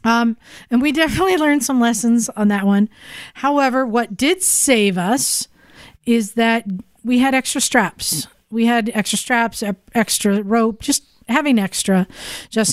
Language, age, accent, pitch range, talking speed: English, 40-59, American, 200-245 Hz, 145 wpm